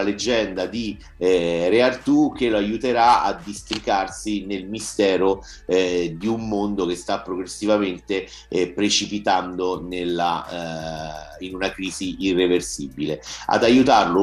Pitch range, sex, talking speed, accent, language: 90-115 Hz, male, 120 wpm, native, Italian